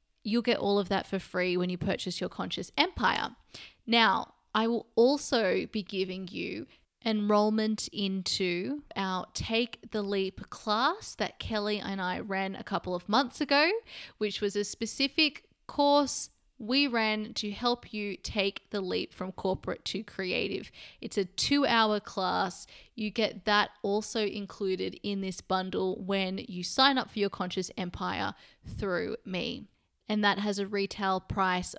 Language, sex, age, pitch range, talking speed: English, female, 20-39, 190-230 Hz, 155 wpm